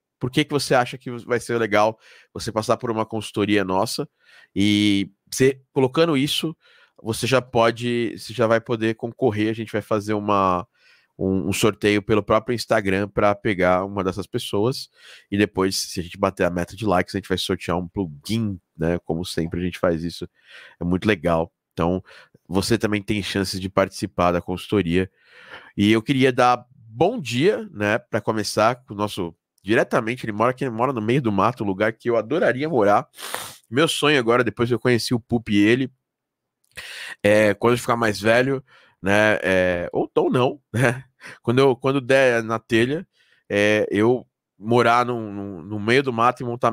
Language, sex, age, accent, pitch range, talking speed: Portuguese, male, 20-39, Brazilian, 100-125 Hz, 180 wpm